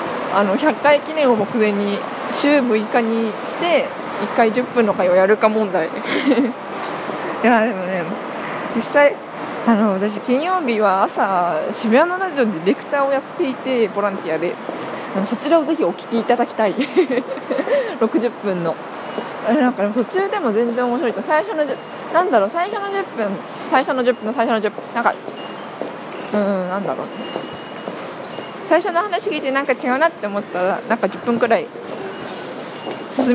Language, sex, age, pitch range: Japanese, female, 20-39, 205-275 Hz